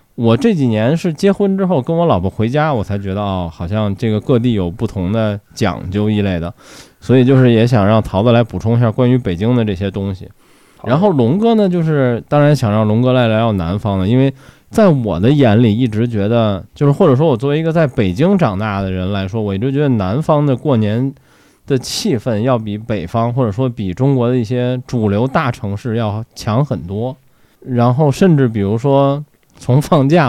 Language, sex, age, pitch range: Chinese, male, 20-39, 105-130 Hz